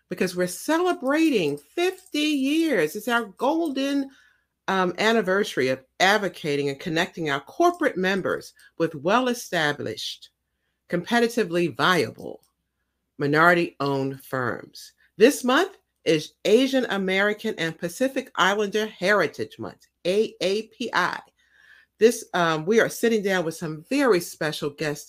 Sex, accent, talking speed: female, American, 110 wpm